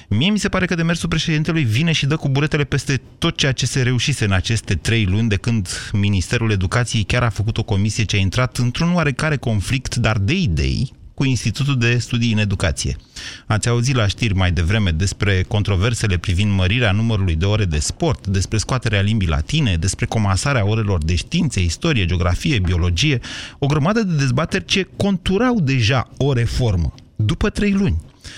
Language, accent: Romanian, native